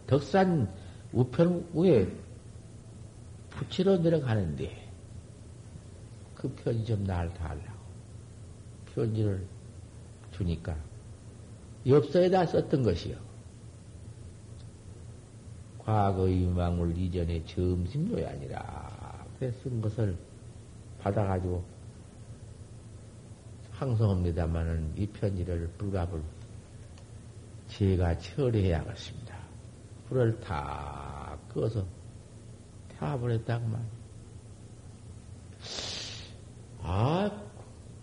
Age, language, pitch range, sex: 50-69, Korean, 100-115 Hz, male